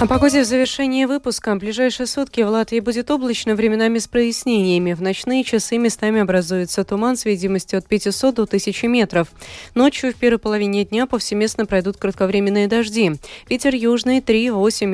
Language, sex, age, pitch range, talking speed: Russian, female, 20-39, 175-235 Hz, 160 wpm